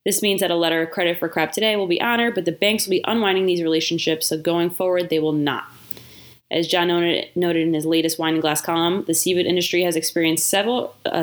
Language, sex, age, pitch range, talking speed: English, female, 20-39, 160-195 Hz, 230 wpm